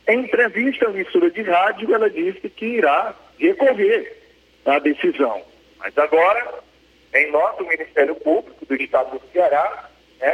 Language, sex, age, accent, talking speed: Portuguese, male, 40-59, Brazilian, 145 wpm